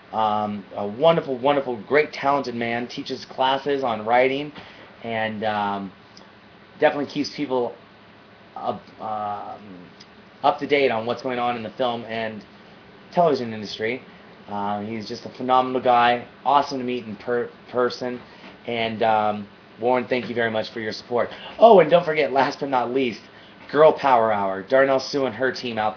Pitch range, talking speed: 110-135 Hz, 150 wpm